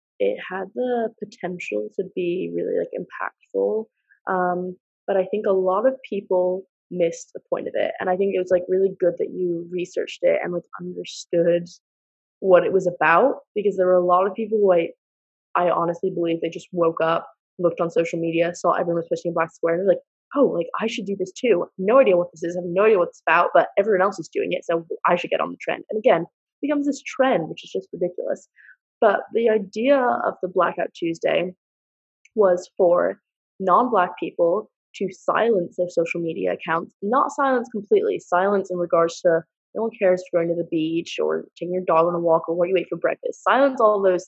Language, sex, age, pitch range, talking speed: English, female, 20-39, 170-230 Hz, 215 wpm